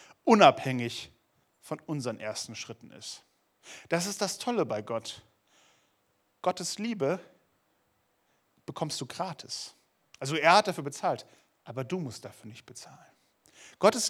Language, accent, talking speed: German, German, 125 wpm